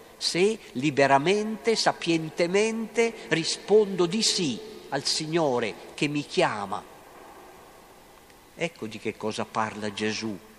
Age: 50-69